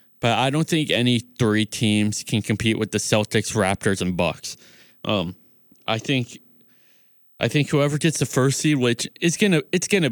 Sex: male